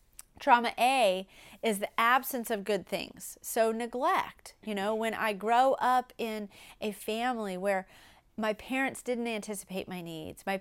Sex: female